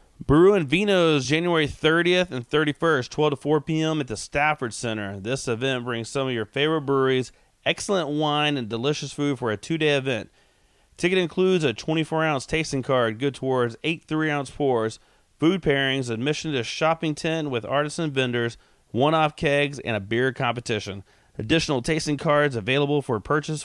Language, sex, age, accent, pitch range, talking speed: English, male, 30-49, American, 120-155 Hz, 160 wpm